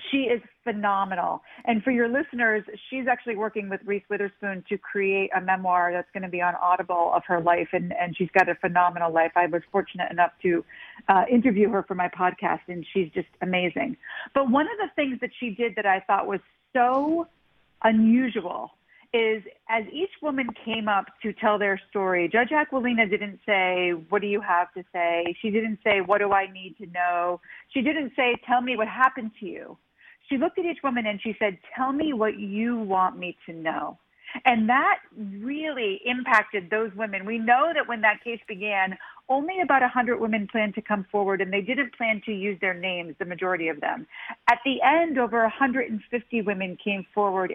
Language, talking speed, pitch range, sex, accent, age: English, 200 wpm, 190-245 Hz, female, American, 40-59